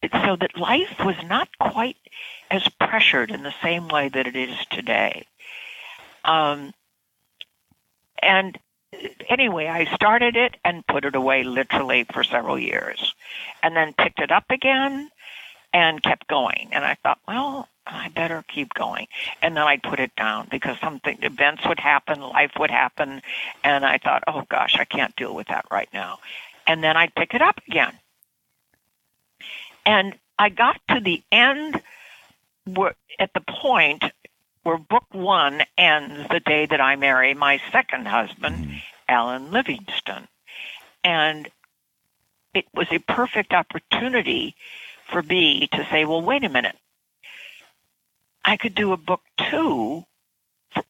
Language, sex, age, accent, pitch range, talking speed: English, female, 60-79, American, 150-225 Hz, 145 wpm